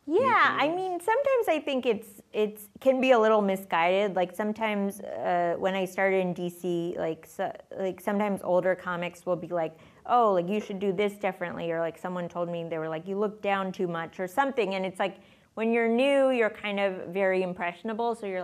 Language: English